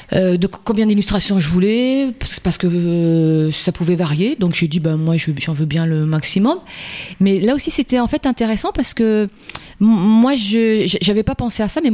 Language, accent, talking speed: French, French, 205 wpm